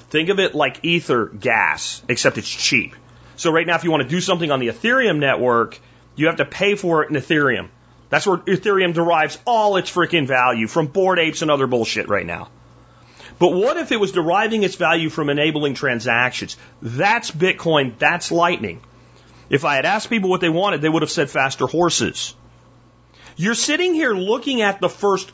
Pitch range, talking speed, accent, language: 150-210 Hz, 195 wpm, American, English